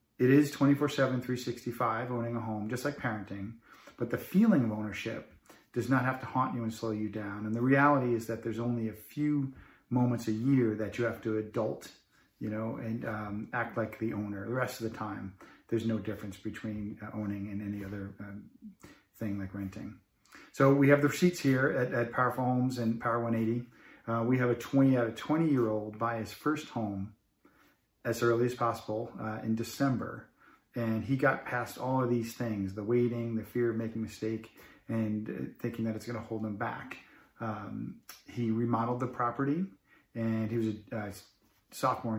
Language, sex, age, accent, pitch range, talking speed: English, male, 40-59, American, 110-125 Hz, 195 wpm